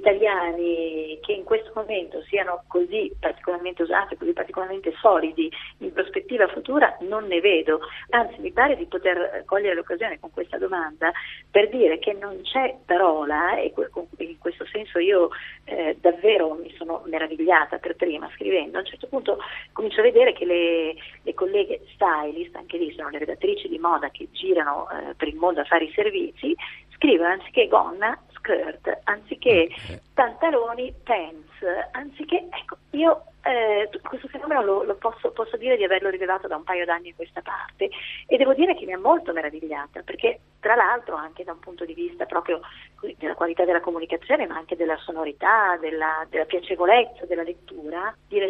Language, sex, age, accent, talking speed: Italian, female, 40-59, native, 165 wpm